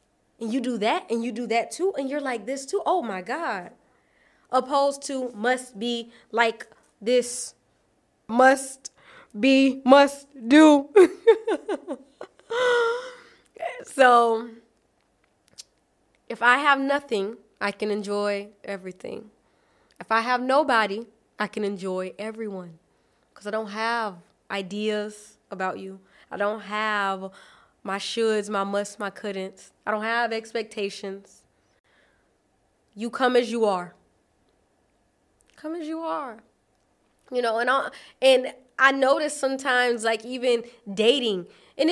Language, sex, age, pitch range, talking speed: Amharic, female, 20-39, 215-275 Hz, 120 wpm